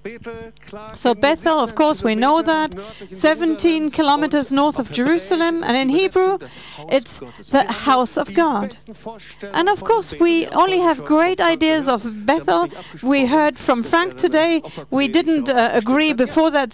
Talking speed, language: 145 wpm, English